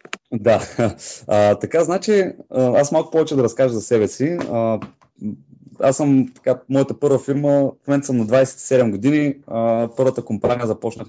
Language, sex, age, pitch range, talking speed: Bulgarian, male, 20-39, 105-135 Hz, 150 wpm